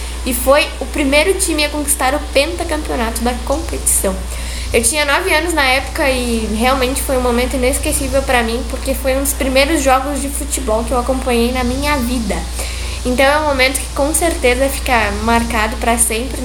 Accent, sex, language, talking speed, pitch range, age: Brazilian, female, Portuguese, 180 wpm, 230-275 Hz, 10-29